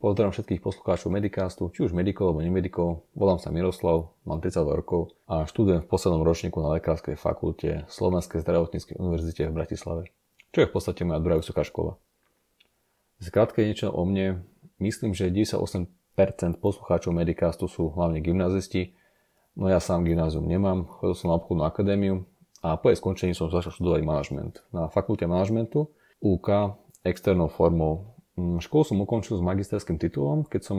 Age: 30-49